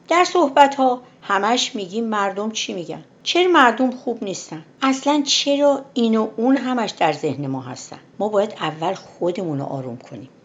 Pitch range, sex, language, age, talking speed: 150-230 Hz, female, Persian, 60-79, 160 wpm